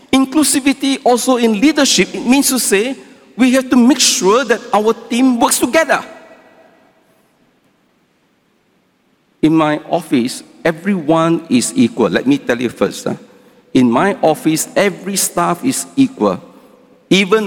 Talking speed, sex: 125 wpm, male